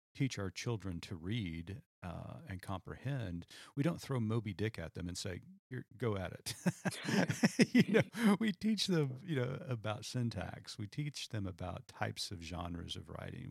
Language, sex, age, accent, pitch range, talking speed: English, male, 40-59, American, 85-120 Hz, 175 wpm